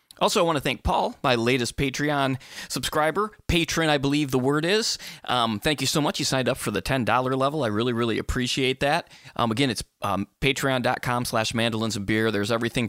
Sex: male